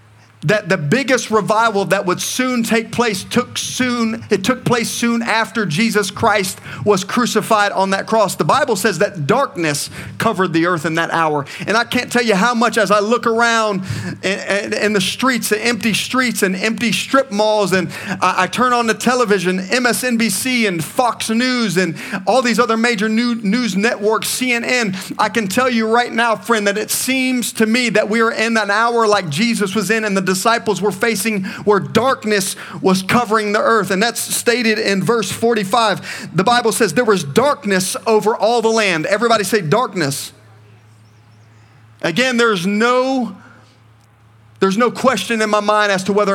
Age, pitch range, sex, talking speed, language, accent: 40-59, 190-230 Hz, male, 185 wpm, English, American